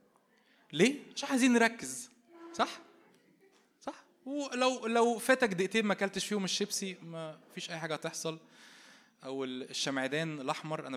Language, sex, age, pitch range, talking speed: Arabic, male, 20-39, 155-240 Hz, 130 wpm